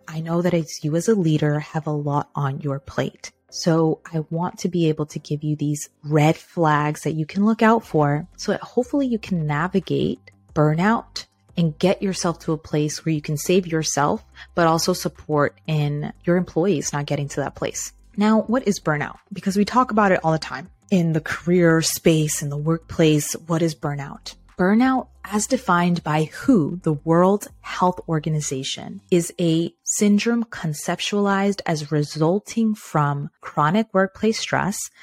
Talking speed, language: 175 wpm, English